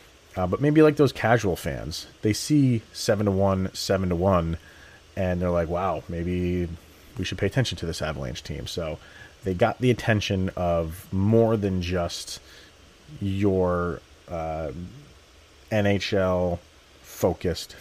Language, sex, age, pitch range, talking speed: English, male, 30-49, 85-110 Hz, 120 wpm